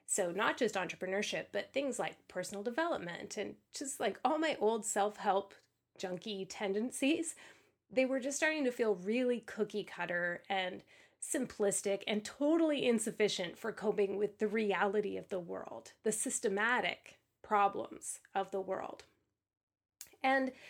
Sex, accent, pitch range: female, American, 195-250 Hz